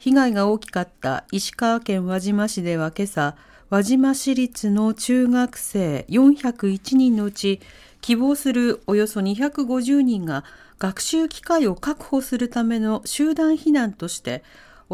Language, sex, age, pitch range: Japanese, female, 40-59, 175-245 Hz